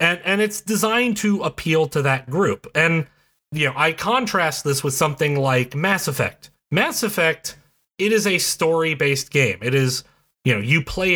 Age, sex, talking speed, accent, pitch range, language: 30-49, male, 175 wpm, American, 130-170 Hz, English